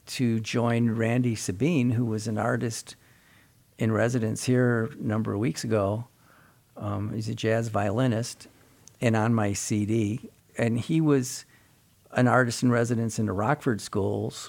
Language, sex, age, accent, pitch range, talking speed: English, male, 50-69, American, 105-125 Hz, 150 wpm